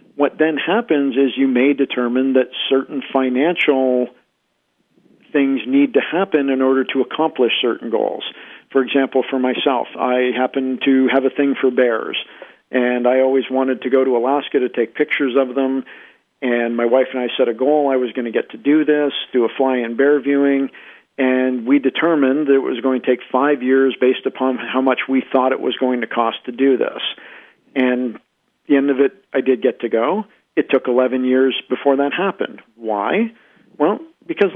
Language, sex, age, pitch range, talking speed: English, male, 50-69, 130-145 Hz, 195 wpm